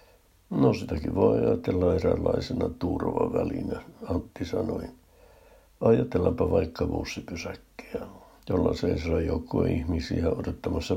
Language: Finnish